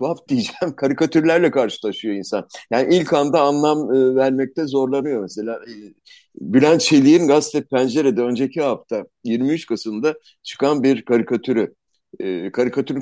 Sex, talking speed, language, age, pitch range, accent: male, 125 wpm, Turkish, 50-69, 120-160 Hz, native